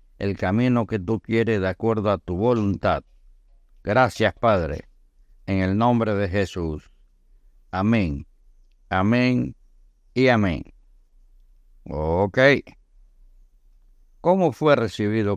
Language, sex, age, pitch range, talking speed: Spanish, male, 60-79, 95-130 Hz, 100 wpm